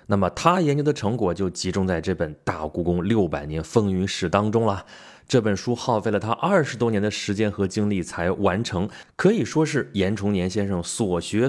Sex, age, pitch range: male, 20-39, 90-130 Hz